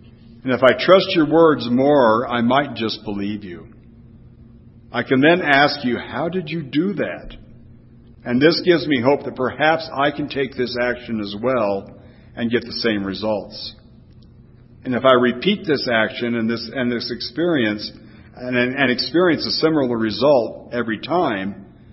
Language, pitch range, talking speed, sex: English, 110-140 Hz, 160 wpm, male